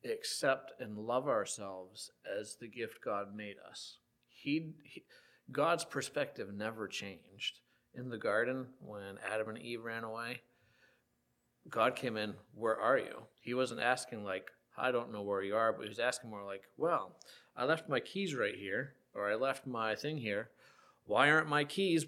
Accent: American